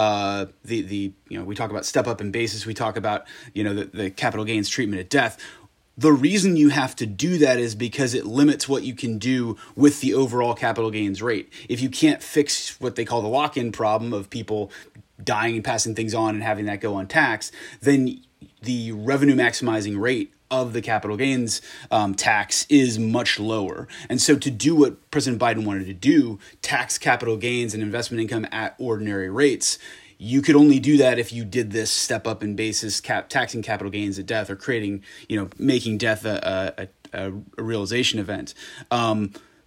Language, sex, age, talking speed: English, male, 30-49, 200 wpm